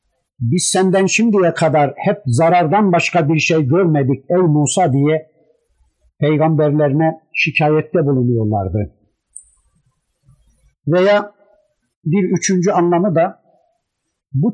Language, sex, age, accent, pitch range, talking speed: Turkish, male, 50-69, native, 145-180 Hz, 90 wpm